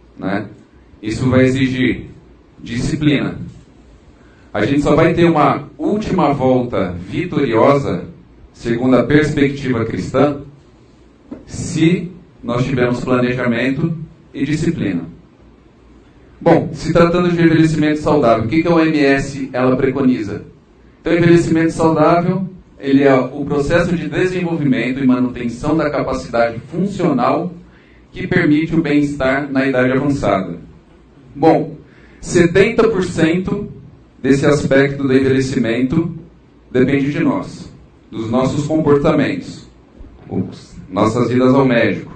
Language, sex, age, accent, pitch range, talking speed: Portuguese, male, 40-59, Brazilian, 130-160 Hz, 105 wpm